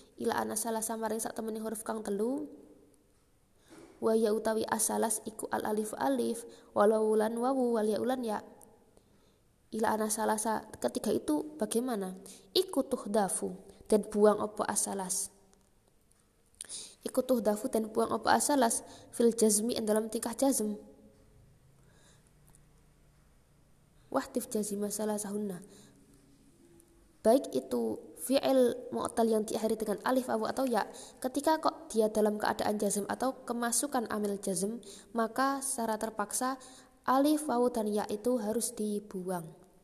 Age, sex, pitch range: 20-39, female, 210-240 Hz